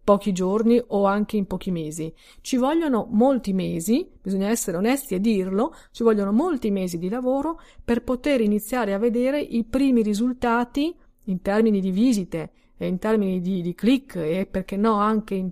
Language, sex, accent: Italian, female, native